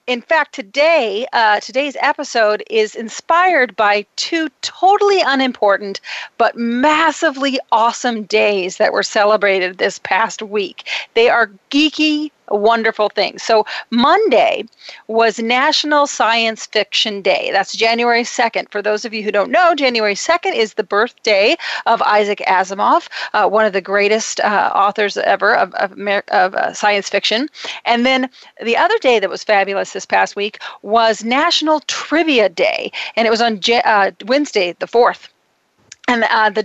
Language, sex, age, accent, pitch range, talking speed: English, female, 40-59, American, 210-280 Hz, 155 wpm